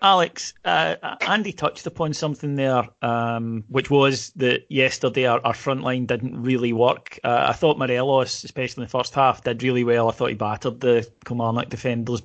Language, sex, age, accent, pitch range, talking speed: English, male, 30-49, British, 120-140 Hz, 185 wpm